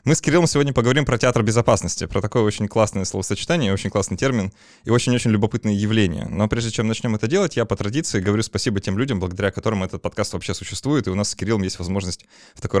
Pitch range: 95-115 Hz